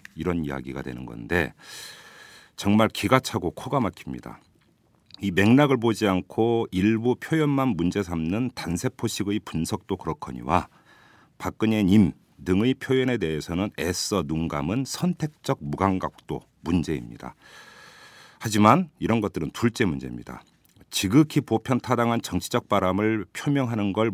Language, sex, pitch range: Korean, male, 80-115 Hz